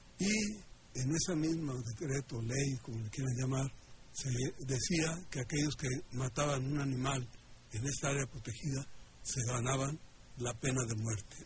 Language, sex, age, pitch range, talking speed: Spanish, male, 60-79, 120-145 Hz, 145 wpm